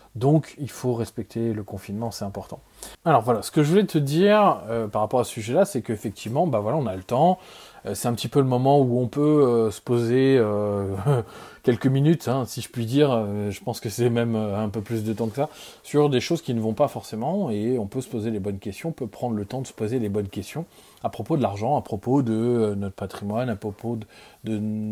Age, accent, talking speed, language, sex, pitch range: 20-39, French, 250 wpm, French, male, 105-130 Hz